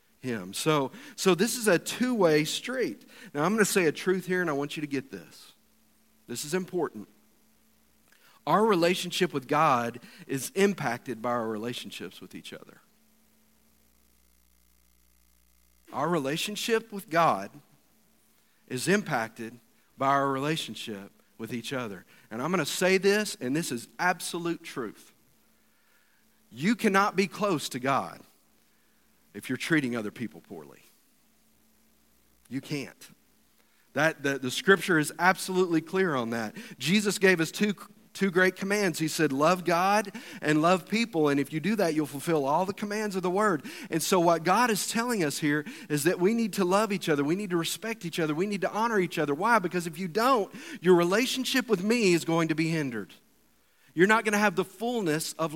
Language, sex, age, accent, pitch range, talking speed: English, male, 50-69, American, 140-200 Hz, 175 wpm